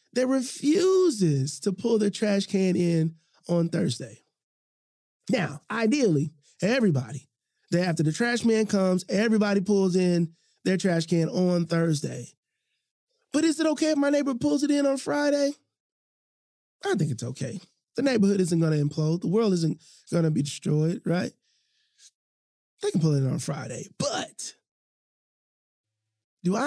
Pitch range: 170-255 Hz